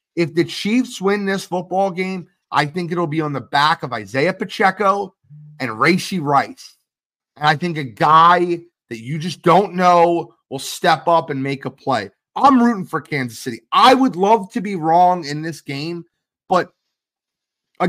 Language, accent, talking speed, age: English, American, 180 wpm, 30-49